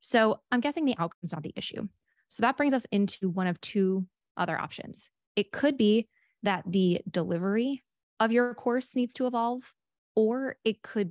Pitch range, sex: 180-225 Hz, female